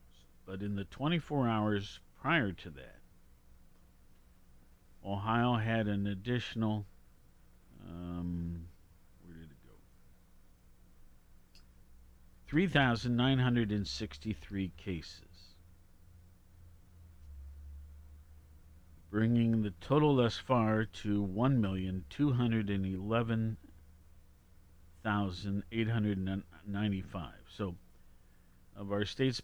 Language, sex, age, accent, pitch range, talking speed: English, male, 50-69, American, 80-110 Hz, 55 wpm